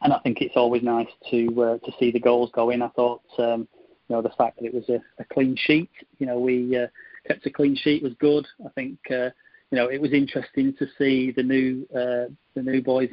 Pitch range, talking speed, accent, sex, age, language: 120-135 Hz, 245 wpm, British, male, 30-49, English